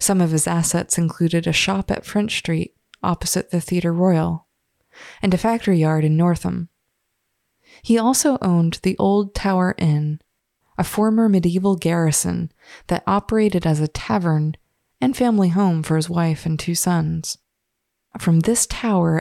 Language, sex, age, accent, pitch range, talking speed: English, female, 20-39, American, 155-185 Hz, 150 wpm